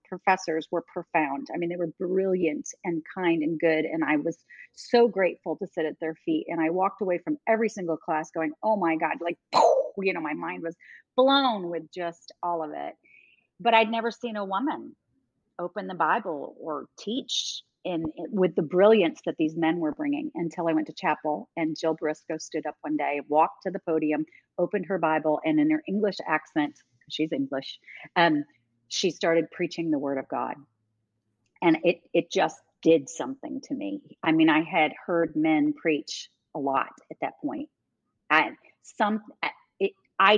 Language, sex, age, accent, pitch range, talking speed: English, female, 30-49, American, 160-210 Hz, 185 wpm